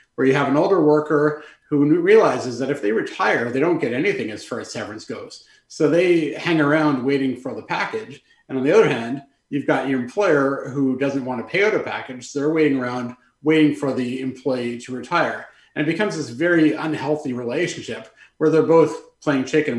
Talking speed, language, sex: 205 wpm, English, male